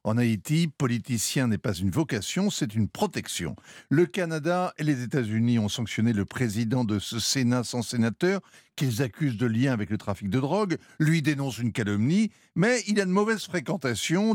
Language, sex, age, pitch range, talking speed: French, male, 60-79, 115-175 Hz, 180 wpm